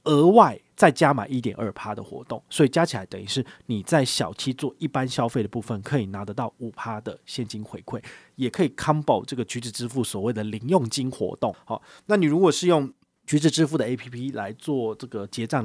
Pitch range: 110-140 Hz